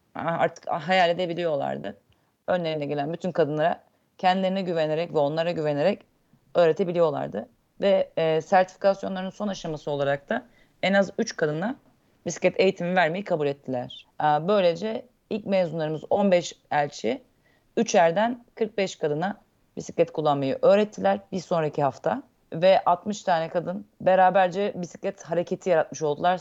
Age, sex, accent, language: 40-59, female, native, Turkish